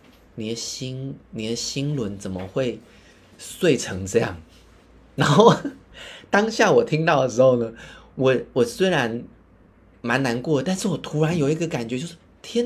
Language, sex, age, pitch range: Chinese, male, 20-39, 95-135 Hz